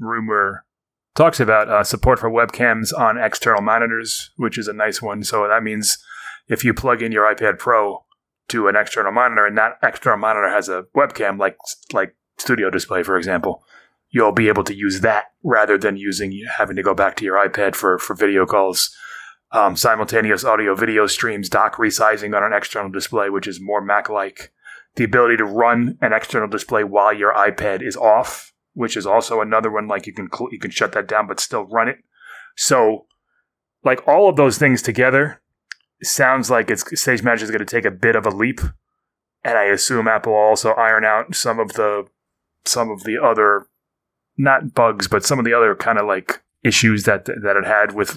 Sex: male